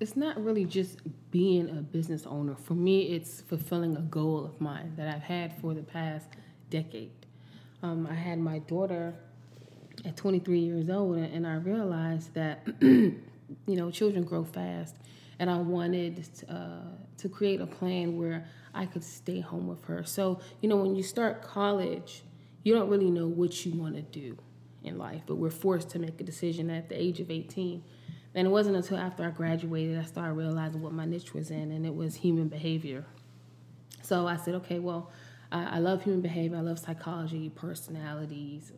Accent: American